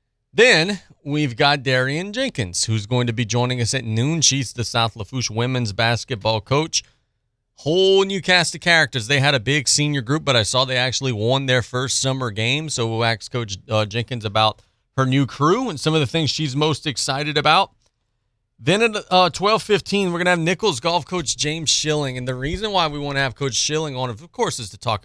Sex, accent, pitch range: male, American, 120-165 Hz